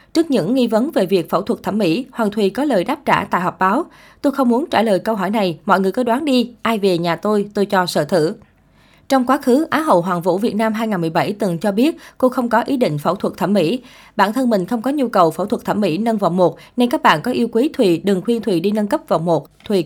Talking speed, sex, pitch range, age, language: 280 wpm, female, 180-240 Hz, 20-39, Vietnamese